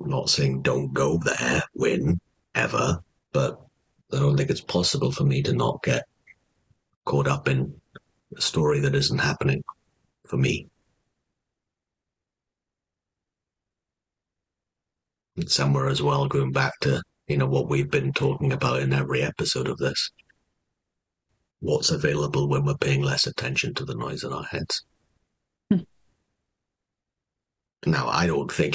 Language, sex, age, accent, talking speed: English, male, 50-69, British, 135 wpm